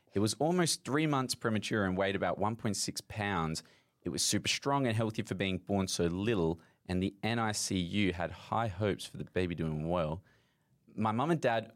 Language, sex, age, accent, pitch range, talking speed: English, male, 20-39, Australian, 100-120 Hz, 190 wpm